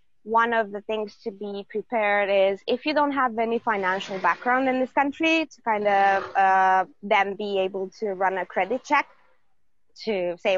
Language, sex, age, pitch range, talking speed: Romanian, female, 20-39, 175-210 Hz, 180 wpm